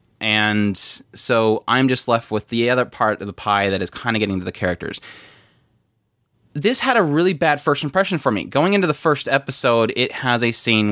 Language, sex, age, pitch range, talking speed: English, male, 20-39, 105-145 Hz, 210 wpm